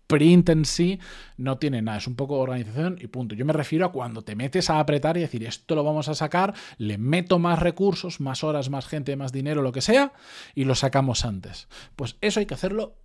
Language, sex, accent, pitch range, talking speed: Spanish, male, Spanish, 125-170 Hz, 230 wpm